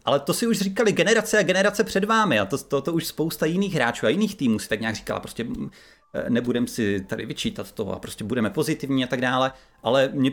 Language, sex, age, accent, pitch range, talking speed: Czech, male, 30-49, native, 115-135 Hz, 230 wpm